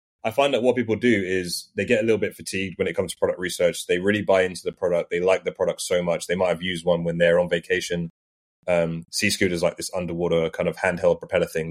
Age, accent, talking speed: 20-39, British, 260 wpm